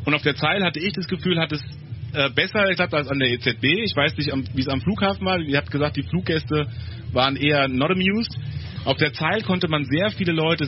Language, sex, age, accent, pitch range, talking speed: English, male, 30-49, German, 130-165 Hz, 230 wpm